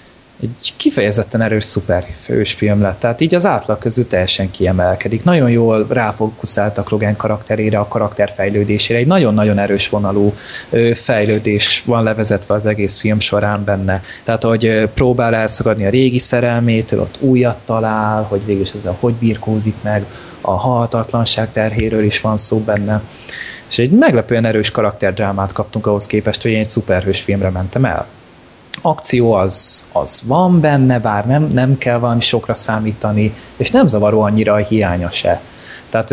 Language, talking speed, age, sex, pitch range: Hungarian, 150 wpm, 20-39, male, 105-120 Hz